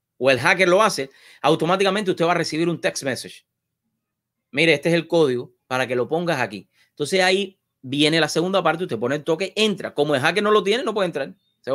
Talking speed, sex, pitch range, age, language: 225 wpm, male, 120-170 Hz, 30-49, English